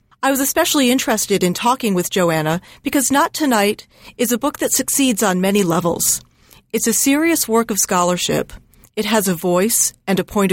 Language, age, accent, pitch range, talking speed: English, 40-59, American, 185-245 Hz, 180 wpm